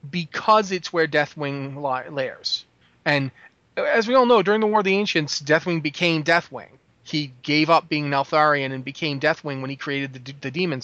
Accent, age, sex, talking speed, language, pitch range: American, 30-49, male, 195 wpm, English, 140-175 Hz